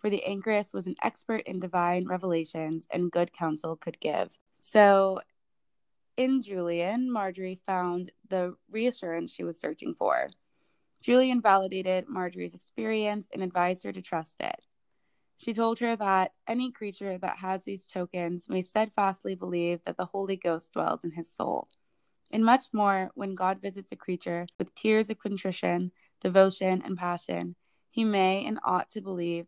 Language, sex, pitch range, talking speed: English, female, 175-210 Hz, 155 wpm